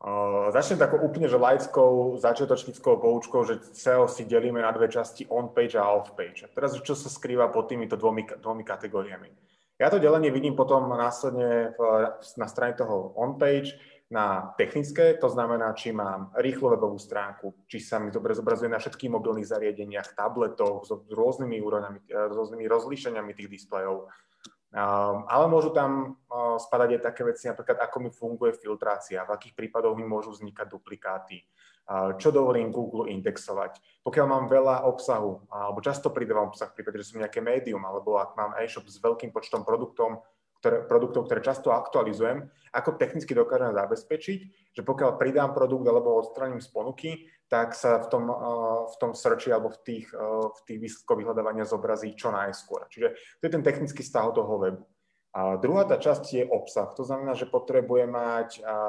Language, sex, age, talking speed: Slovak, male, 20-39, 160 wpm